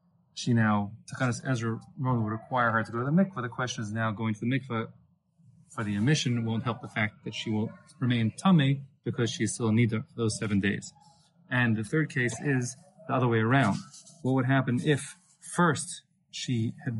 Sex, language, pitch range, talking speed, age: male, English, 110-150 Hz, 205 wpm, 30-49